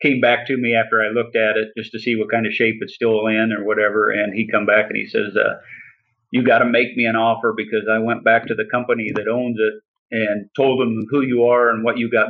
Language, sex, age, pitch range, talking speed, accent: English, male, 50-69, 110-130 Hz, 275 wpm, American